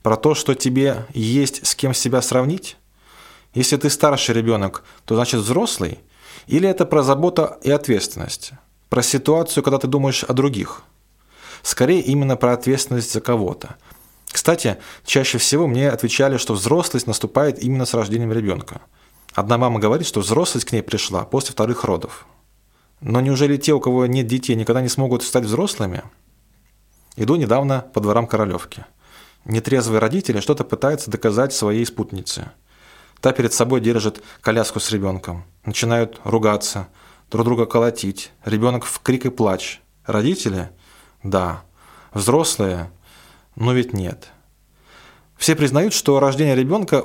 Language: Russian